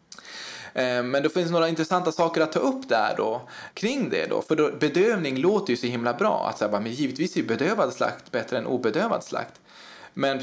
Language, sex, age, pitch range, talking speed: Swedish, male, 20-39, 130-180 Hz, 200 wpm